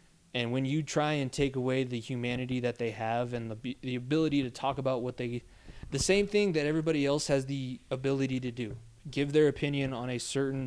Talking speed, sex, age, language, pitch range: 215 wpm, male, 20-39, English, 115-135 Hz